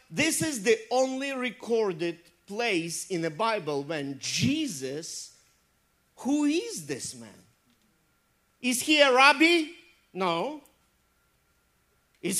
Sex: male